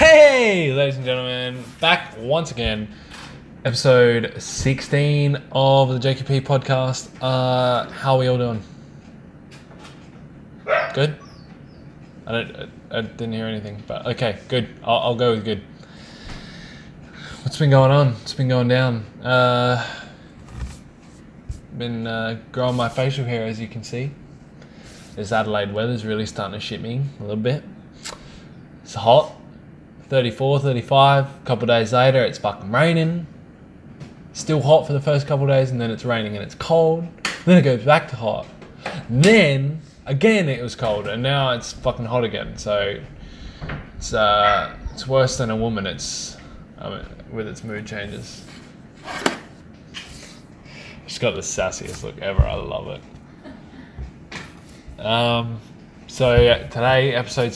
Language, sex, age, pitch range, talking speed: English, male, 10-29, 110-140 Hz, 145 wpm